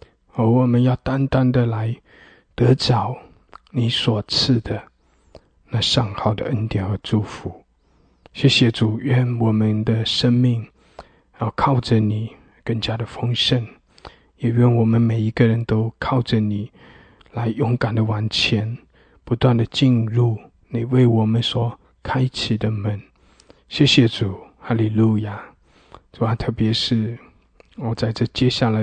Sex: male